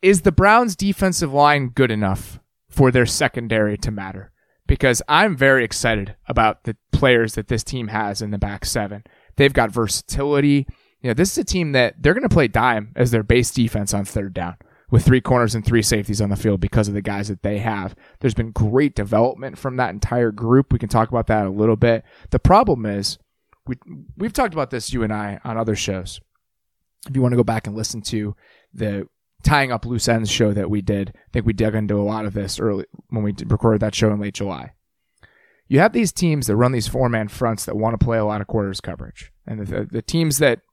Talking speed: 230 wpm